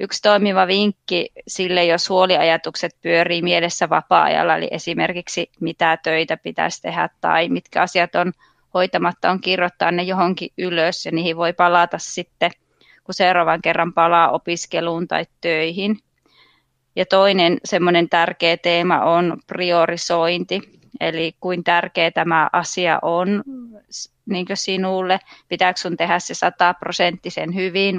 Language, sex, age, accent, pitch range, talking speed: Finnish, female, 20-39, native, 170-180 Hz, 125 wpm